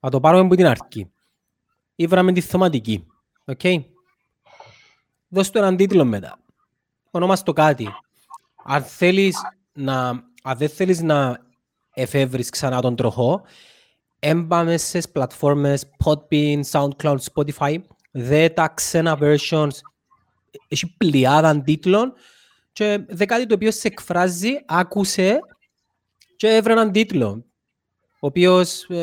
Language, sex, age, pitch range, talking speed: Greek, male, 30-49, 135-185 Hz, 100 wpm